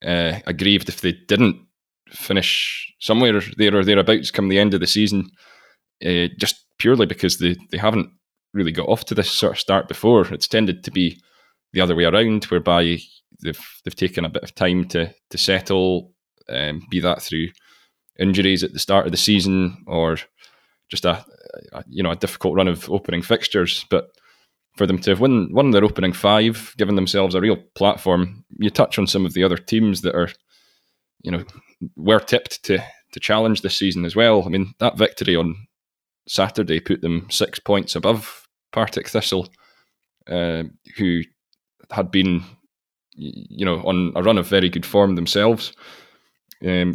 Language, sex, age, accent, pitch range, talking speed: English, male, 10-29, British, 90-105 Hz, 180 wpm